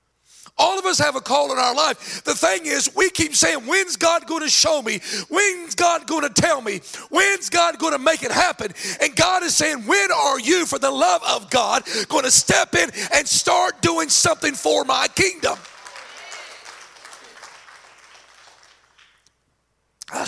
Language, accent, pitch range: English, American, 235-340 Hz